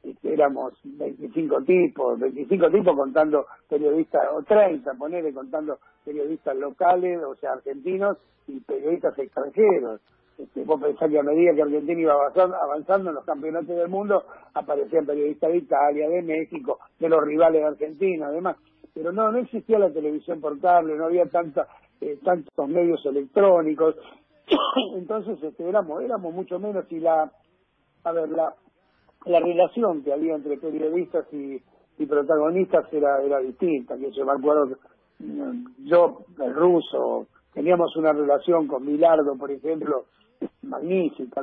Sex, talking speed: male, 140 wpm